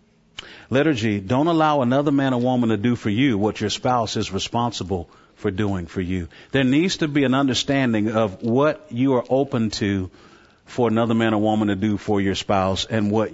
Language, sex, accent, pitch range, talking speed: English, male, American, 105-130 Hz, 200 wpm